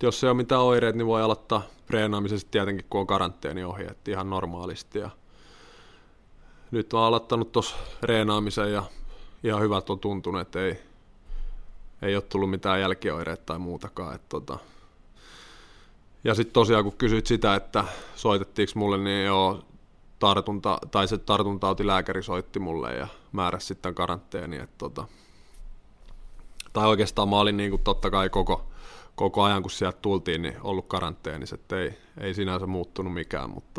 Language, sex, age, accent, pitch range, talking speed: Finnish, male, 20-39, native, 95-105 Hz, 150 wpm